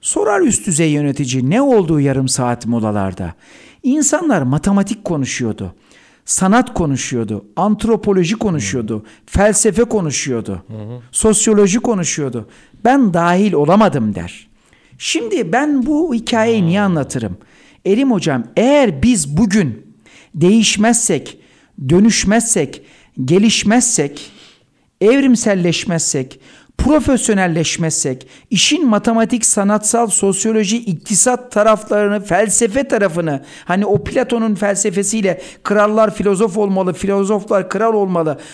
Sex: male